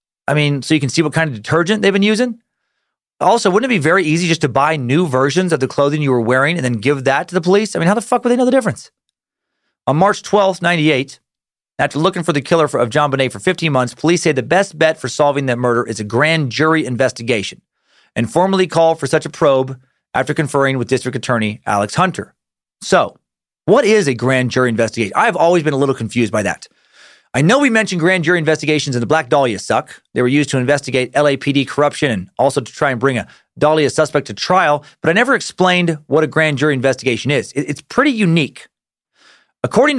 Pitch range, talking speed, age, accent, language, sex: 130-170 Hz, 225 wpm, 40-59, American, English, male